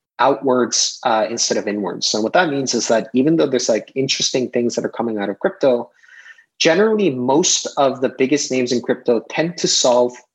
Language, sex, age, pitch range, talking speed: English, male, 30-49, 120-145 Hz, 195 wpm